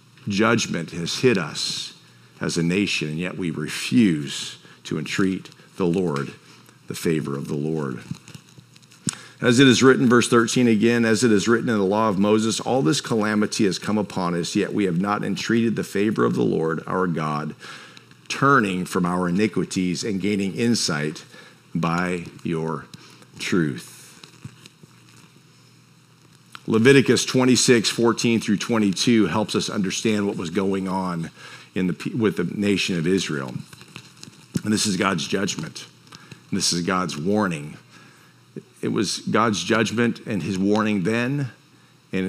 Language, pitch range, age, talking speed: English, 85-115 Hz, 50-69, 145 wpm